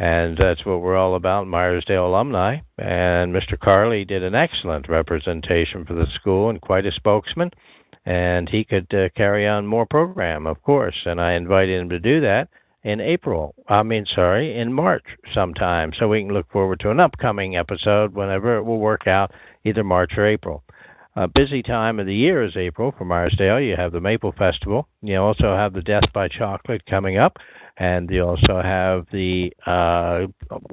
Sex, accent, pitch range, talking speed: male, American, 90-105 Hz, 185 wpm